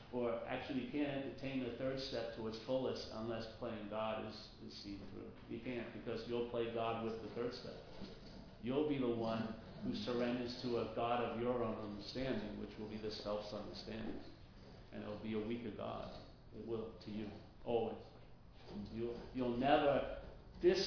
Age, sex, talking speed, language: 50-69, male, 180 wpm, English